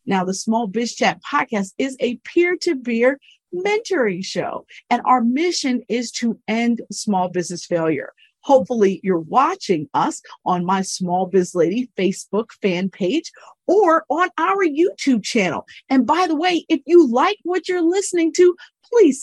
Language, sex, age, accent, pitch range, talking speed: English, female, 50-69, American, 205-300 Hz, 155 wpm